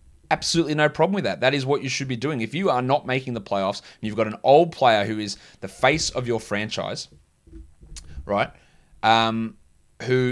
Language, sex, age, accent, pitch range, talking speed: English, male, 20-39, Australian, 100-130 Hz, 205 wpm